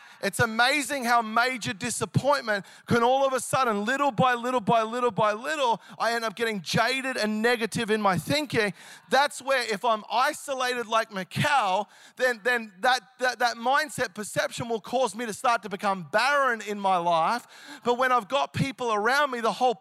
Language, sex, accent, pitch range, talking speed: English, male, Australian, 195-270 Hz, 185 wpm